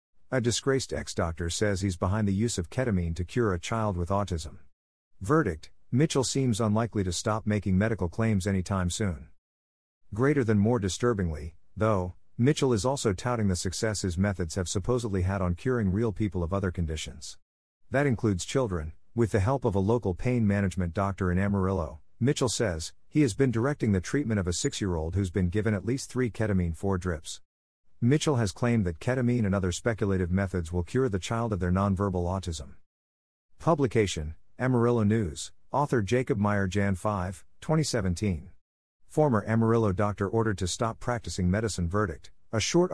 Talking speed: 170 wpm